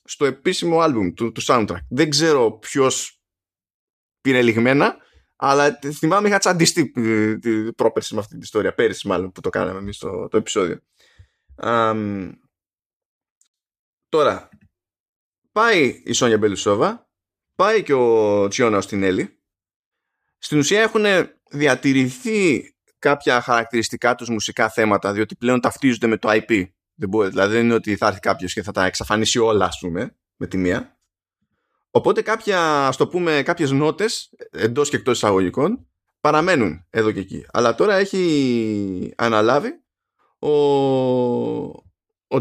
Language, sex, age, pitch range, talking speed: Greek, male, 20-39, 105-145 Hz, 130 wpm